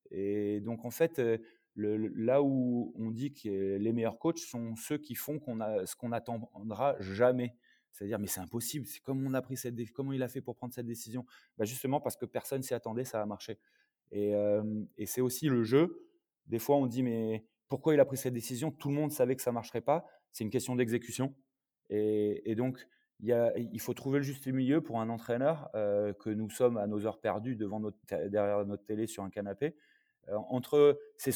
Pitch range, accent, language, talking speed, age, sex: 110-140 Hz, French, French, 225 wpm, 20-39, male